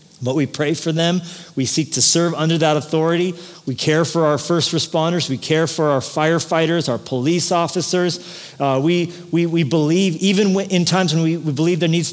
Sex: male